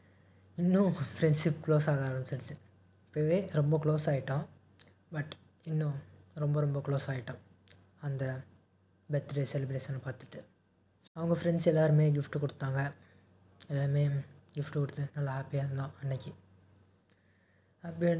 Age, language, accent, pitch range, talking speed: 20-39, Tamil, native, 120-150 Hz, 105 wpm